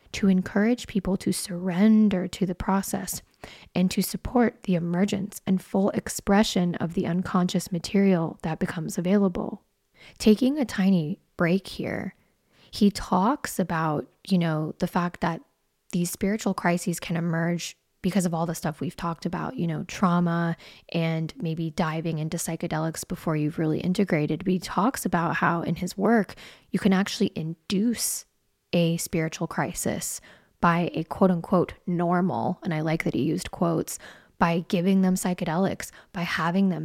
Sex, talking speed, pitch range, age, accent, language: female, 155 wpm, 165-195 Hz, 20-39, American, English